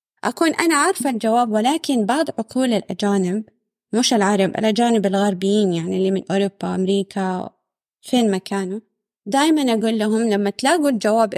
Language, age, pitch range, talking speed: Arabic, 20-39, 205-265 Hz, 130 wpm